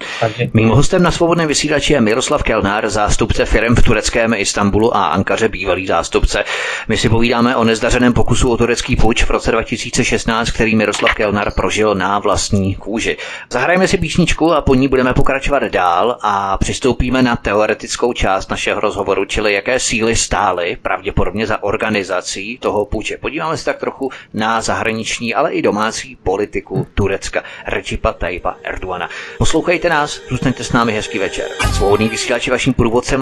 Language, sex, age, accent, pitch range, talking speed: Czech, male, 30-49, native, 105-130 Hz, 150 wpm